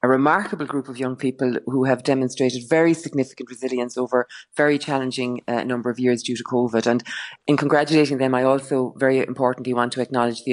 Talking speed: 195 wpm